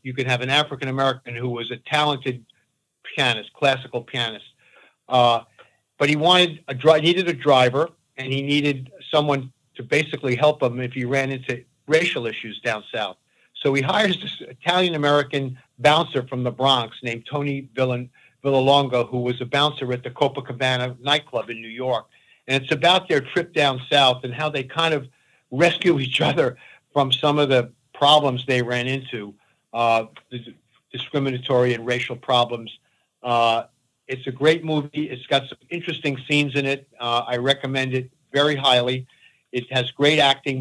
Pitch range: 125-145 Hz